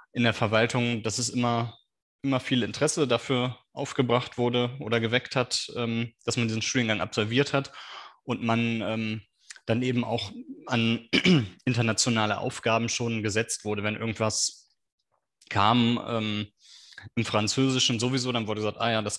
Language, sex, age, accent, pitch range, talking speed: German, male, 20-39, German, 110-125 Hz, 140 wpm